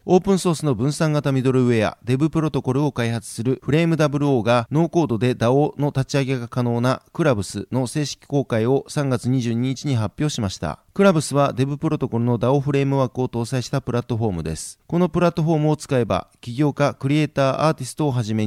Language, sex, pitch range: Japanese, male, 120-150 Hz